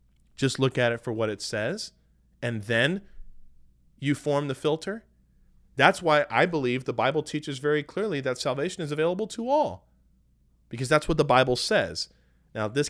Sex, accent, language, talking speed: male, American, English, 170 wpm